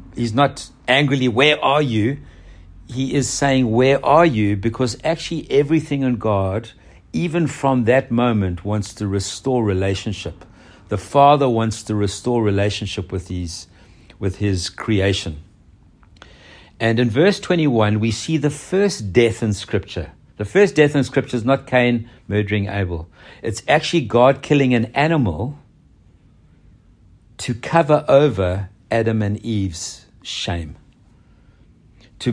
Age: 60-79